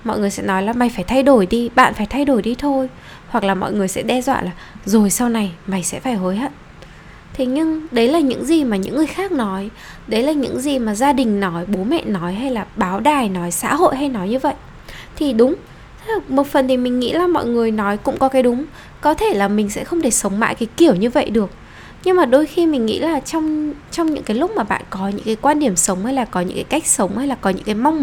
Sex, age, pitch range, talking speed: female, 10-29, 210-285 Hz, 270 wpm